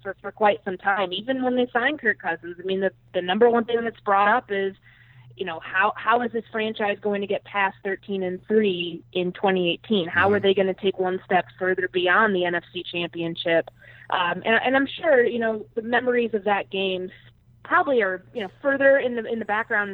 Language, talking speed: English, 220 wpm